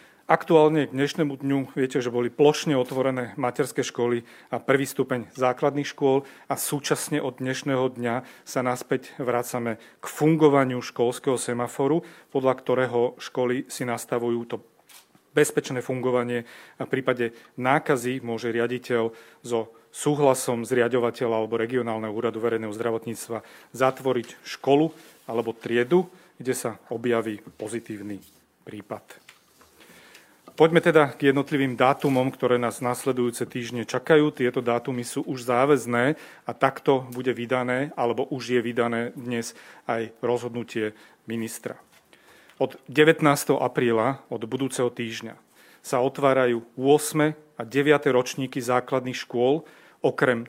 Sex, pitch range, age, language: male, 120-140 Hz, 40-59, Slovak